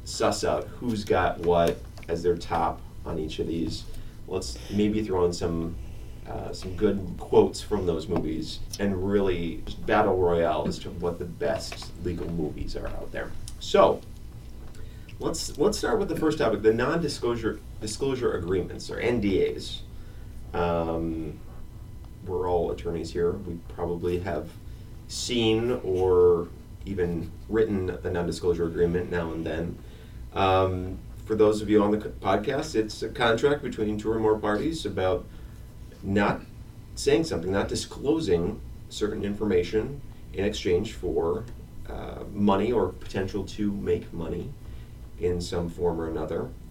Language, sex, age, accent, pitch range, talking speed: English, male, 30-49, American, 85-110 Hz, 140 wpm